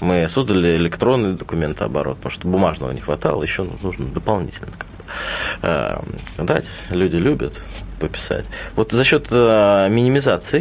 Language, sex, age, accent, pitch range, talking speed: Russian, male, 30-49, native, 90-120 Hz, 115 wpm